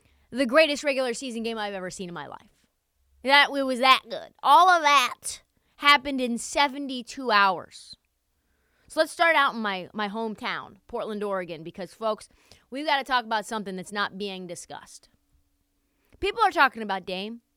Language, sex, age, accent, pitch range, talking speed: English, female, 20-39, American, 210-300 Hz, 170 wpm